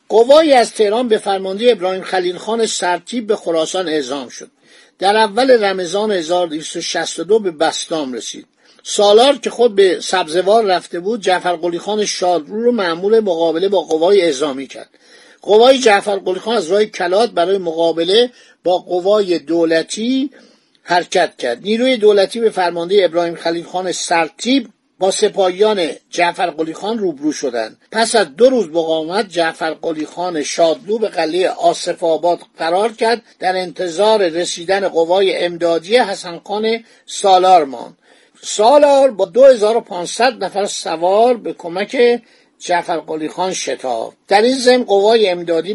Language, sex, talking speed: Persian, male, 135 wpm